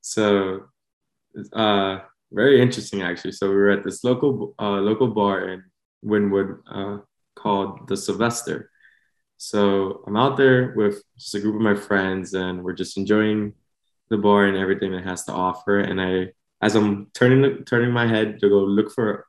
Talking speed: 170 wpm